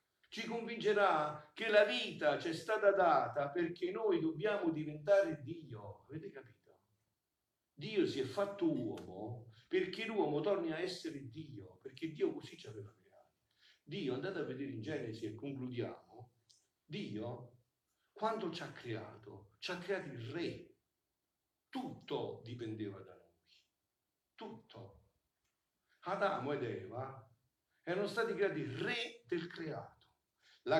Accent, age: native, 50-69